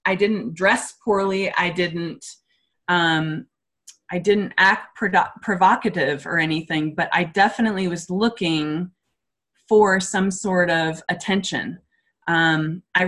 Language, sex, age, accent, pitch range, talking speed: English, female, 20-39, American, 170-205 Hz, 115 wpm